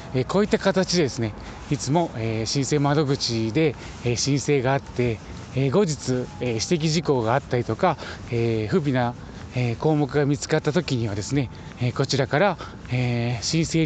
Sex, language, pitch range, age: male, Japanese, 115-175 Hz, 20-39